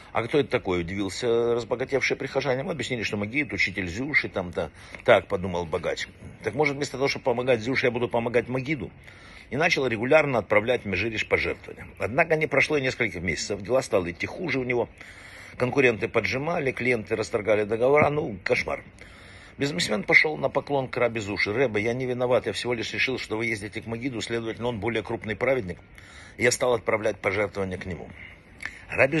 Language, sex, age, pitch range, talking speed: Russian, male, 50-69, 95-130 Hz, 175 wpm